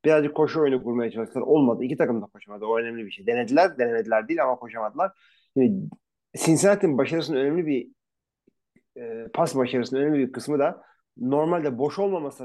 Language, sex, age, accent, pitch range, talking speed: Turkish, male, 40-59, native, 125-180 Hz, 165 wpm